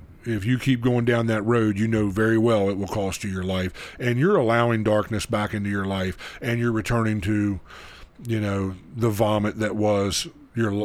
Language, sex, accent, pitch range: English, male, American, 100-120 Hz